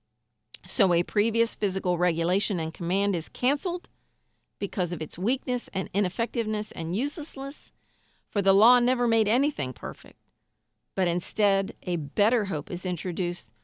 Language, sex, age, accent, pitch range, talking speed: English, female, 50-69, American, 180-215 Hz, 135 wpm